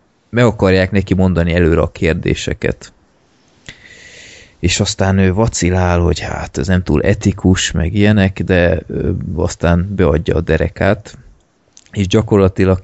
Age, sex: 20-39, male